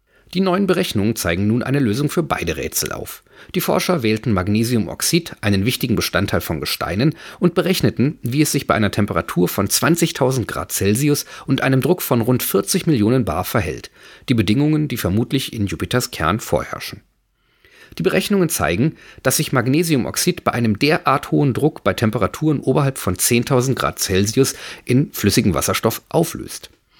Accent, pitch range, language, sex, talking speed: German, 100-150 Hz, German, male, 160 wpm